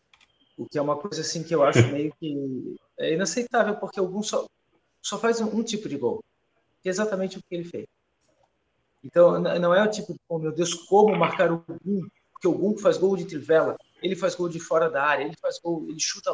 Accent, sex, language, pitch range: Brazilian, male, Portuguese, 165-255 Hz